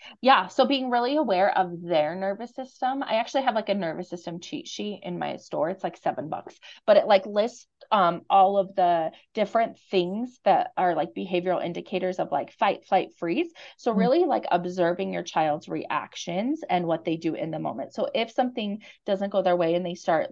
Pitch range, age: 175-240 Hz, 30-49